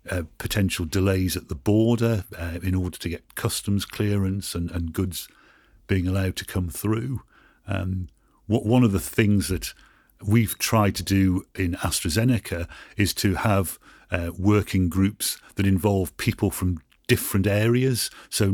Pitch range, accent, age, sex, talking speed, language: 95-105 Hz, British, 50-69, male, 150 wpm, English